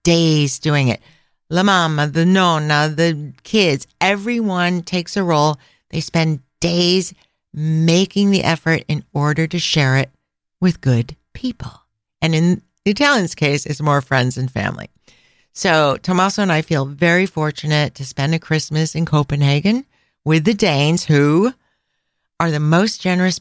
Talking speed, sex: 150 wpm, female